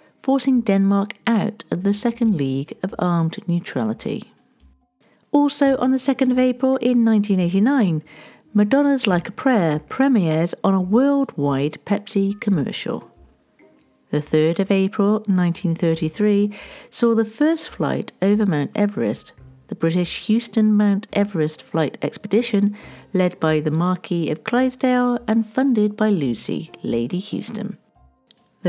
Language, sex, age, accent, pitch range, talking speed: English, female, 50-69, British, 160-225 Hz, 125 wpm